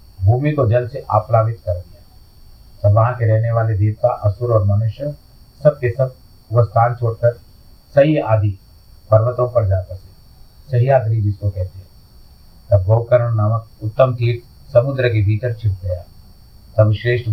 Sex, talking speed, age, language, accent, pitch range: male, 85 wpm, 50-69, Hindi, native, 100-120 Hz